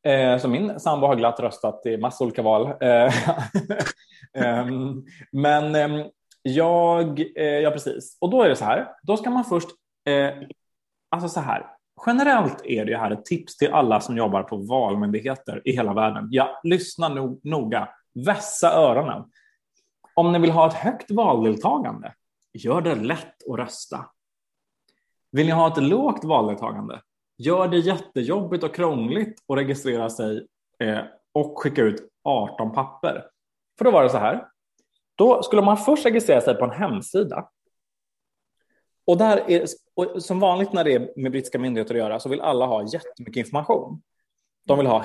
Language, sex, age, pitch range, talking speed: English, male, 20-39, 125-190 Hz, 165 wpm